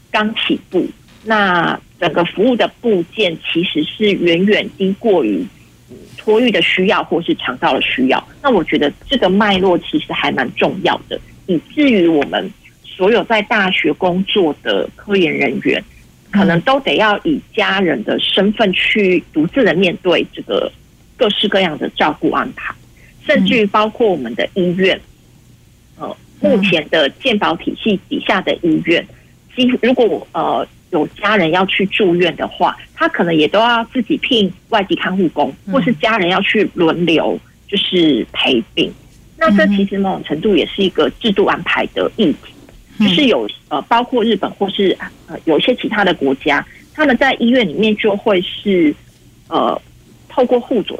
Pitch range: 185-245 Hz